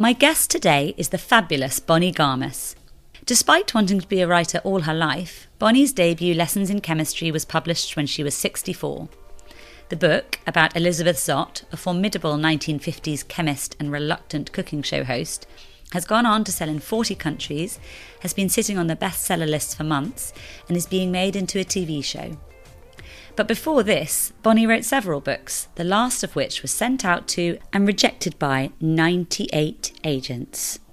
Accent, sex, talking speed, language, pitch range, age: British, female, 170 wpm, English, 150-200 Hz, 30-49